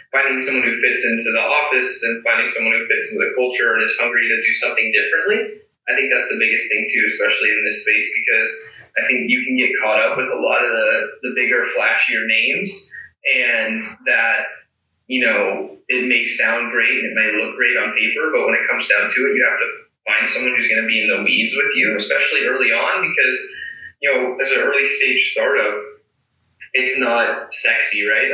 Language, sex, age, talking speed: English, male, 20-39, 215 wpm